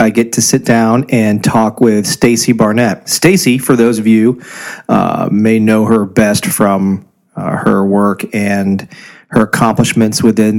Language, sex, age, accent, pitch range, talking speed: English, male, 40-59, American, 110-120 Hz, 160 wpm